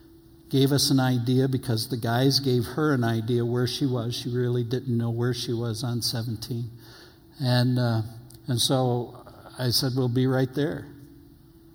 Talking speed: 170 wpm